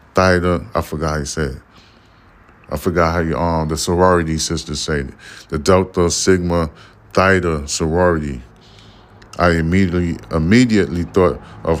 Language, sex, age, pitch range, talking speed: English, male, 30-49, 80-95 Hz, 135 wpm